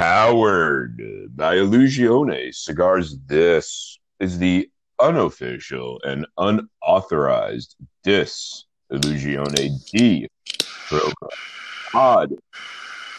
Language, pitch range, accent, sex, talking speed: English, 70-95 Hz, American, male, 65 wpm